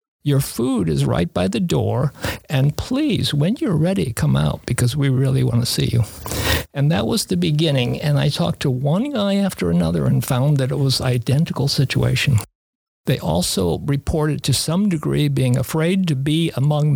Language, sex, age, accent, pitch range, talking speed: English, male, 50-69, American, 130-175 Hz, 185 wpm